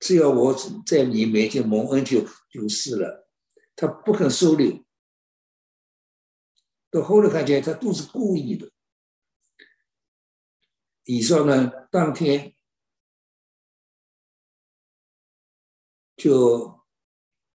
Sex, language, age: male, Chinese, 60-79